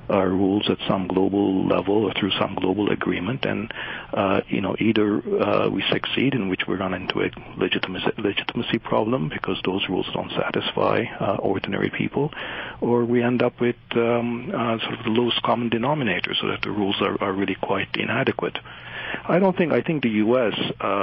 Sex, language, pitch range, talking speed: male, English, 95-115 Hz, 185 wpm